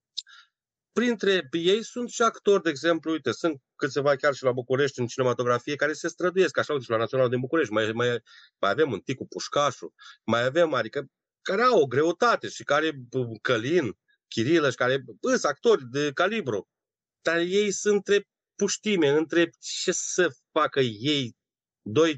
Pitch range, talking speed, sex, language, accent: 125-175 Hz, 170 wpm, male, Romanian, native